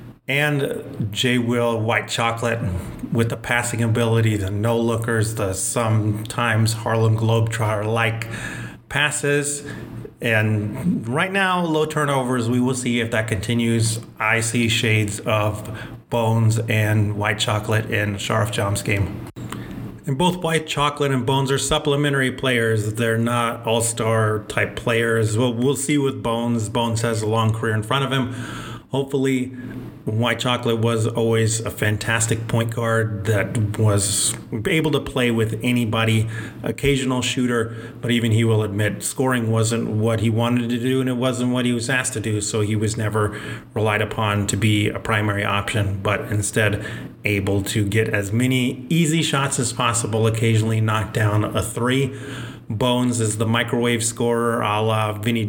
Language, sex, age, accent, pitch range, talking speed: English, male, 30-49, American, 110-130 Hz, 150 wpm